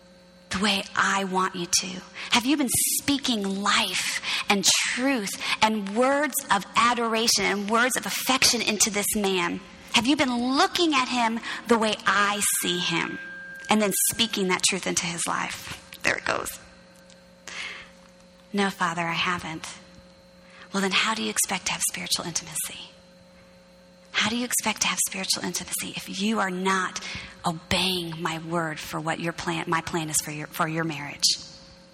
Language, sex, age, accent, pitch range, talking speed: English, female, 30-49, American, 175-220 Hz, 165 wpm